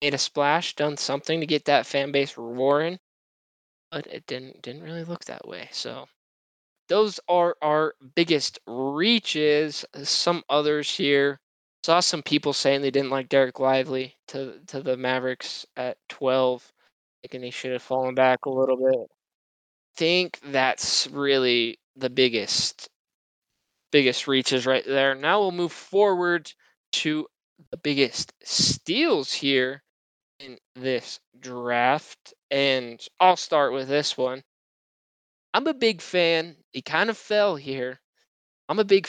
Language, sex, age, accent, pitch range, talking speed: English, male, 20-39, American, 130-150 Hz, 140 wpm